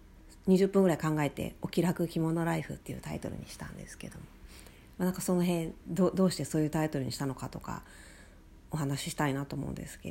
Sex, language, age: female, Japanese, 40-59